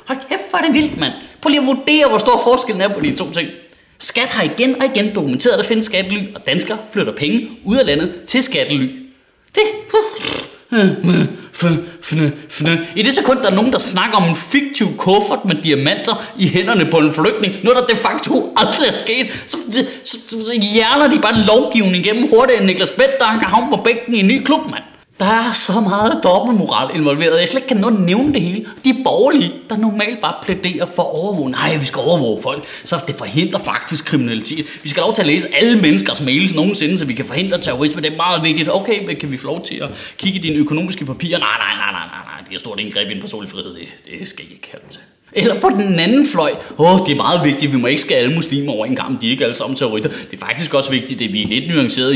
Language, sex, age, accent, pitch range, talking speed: Danish, male, 20-39, native, 155-235 Hz, 240 wpm